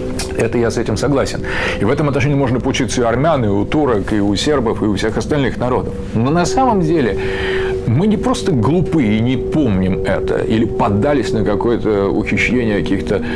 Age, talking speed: 40-59, 195 wpm